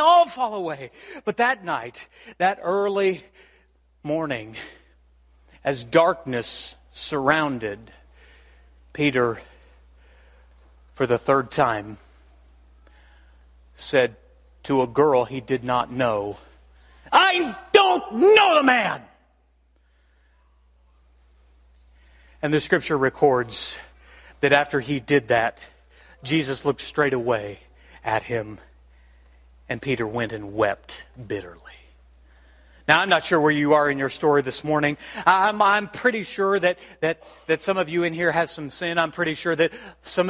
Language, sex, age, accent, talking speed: English, male, 40-59, American, 125 wpm